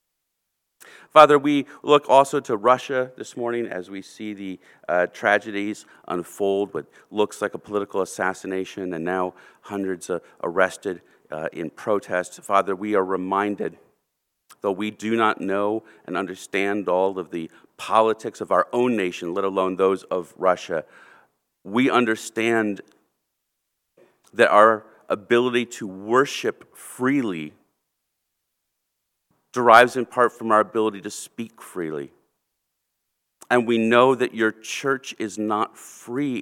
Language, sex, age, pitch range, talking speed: English, male, 40-59, 100-125 Hz, 130 wpm